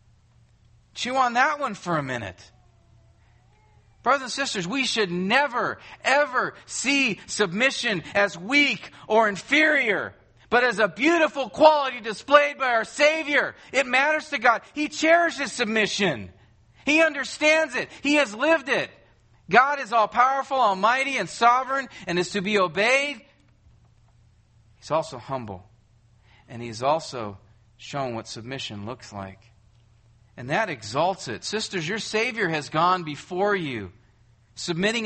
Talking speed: 130 wpm